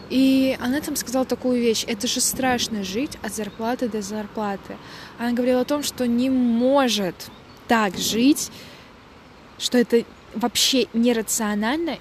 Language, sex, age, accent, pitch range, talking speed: Russian, female, 20-39, native, 220-265 Hz, 135 wpm